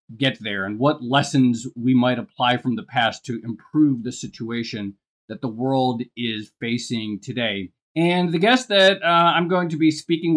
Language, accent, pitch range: English, American, 120-155 Hz